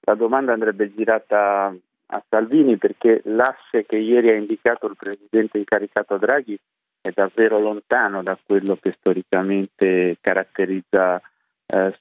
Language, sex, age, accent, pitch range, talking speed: Italian, male, 30-49, native, 90-105 Hz, 125 wpm